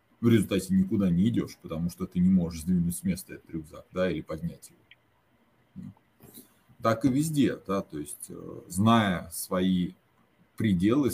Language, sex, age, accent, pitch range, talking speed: Russian, male, 30-49, native, 95-115 Hz, 150 wpm